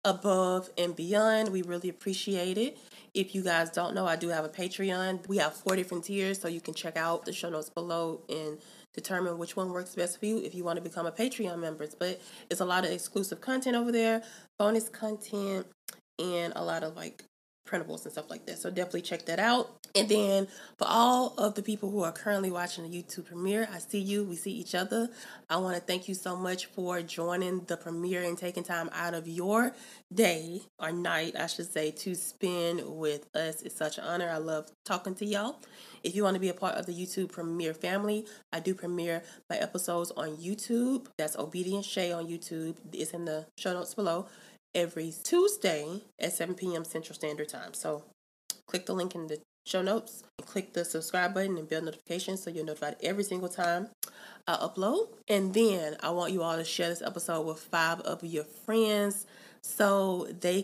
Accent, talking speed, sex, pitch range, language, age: American, 205 wpm, female, 170-205 Hz, English, 20-39